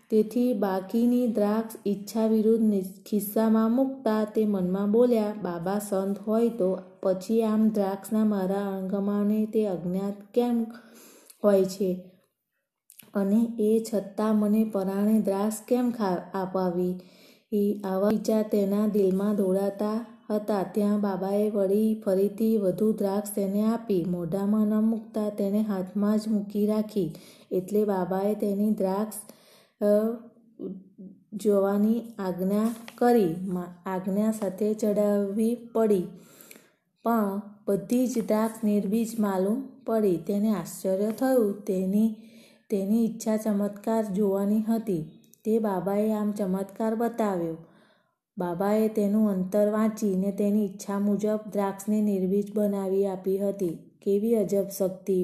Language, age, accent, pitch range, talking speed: Gujarati, 20-39, native, 195-220 Hz, 110 wpm